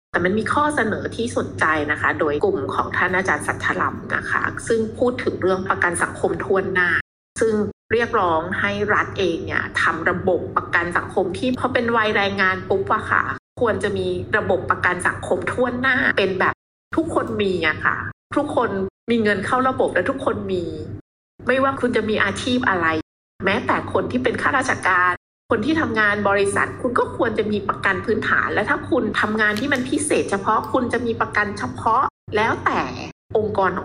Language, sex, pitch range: Thai, female, 195-255 Hz